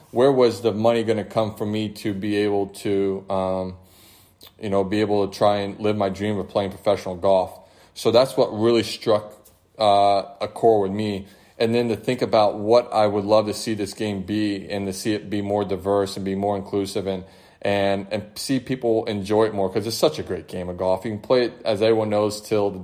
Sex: male